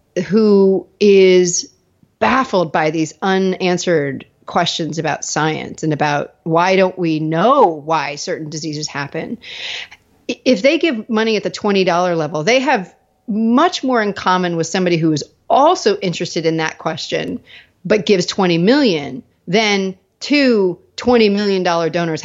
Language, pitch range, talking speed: English, 165-210 Hz, 140 wpm